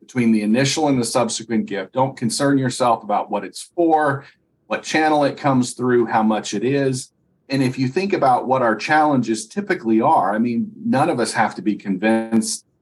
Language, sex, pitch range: English, male, 110-145 Hz